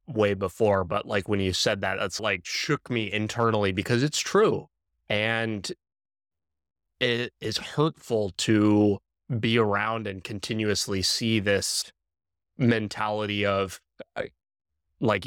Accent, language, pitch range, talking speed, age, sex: American, English, 100-115 Hz, 120 wpm, 20-39, male